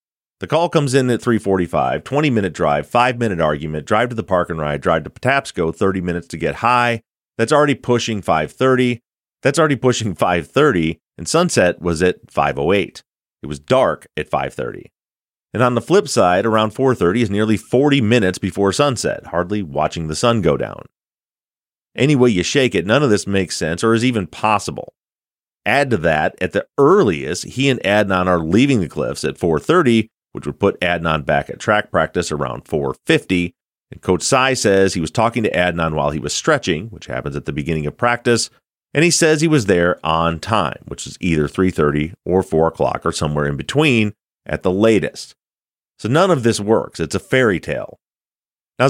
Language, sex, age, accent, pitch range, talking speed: English, male, 30-49, American, 85-125 Hz, 185 wpm